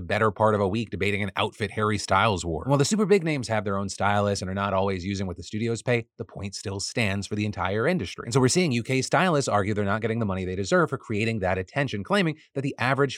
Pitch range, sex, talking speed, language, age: 100-130 Hz, male, 270 wpm, English, 30-49